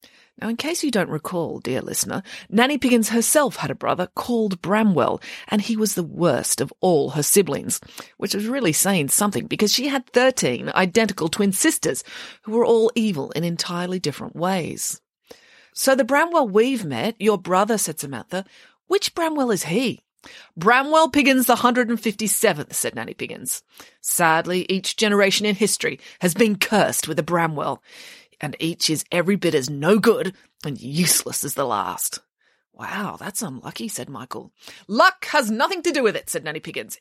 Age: 30-49